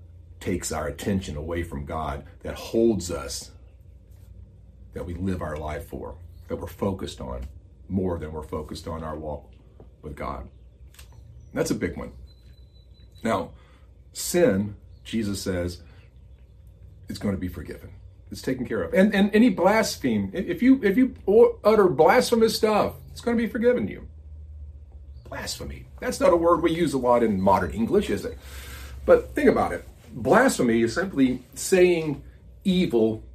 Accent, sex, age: American, male, 40-59